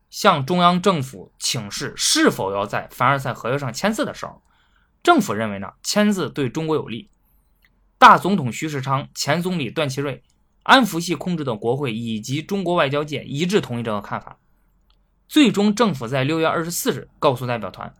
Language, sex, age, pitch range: Chinese, male, 20-39, 120-180 Hz